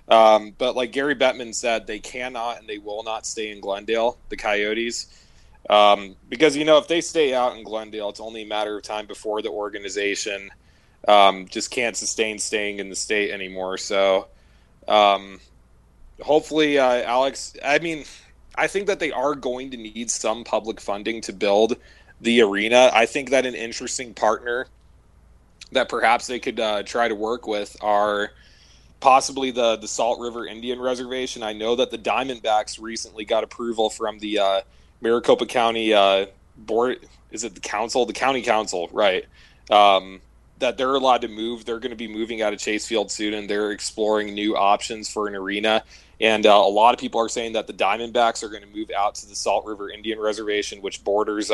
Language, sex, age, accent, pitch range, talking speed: English, male, 20-39, American, 105-120 Hz, 185 wpm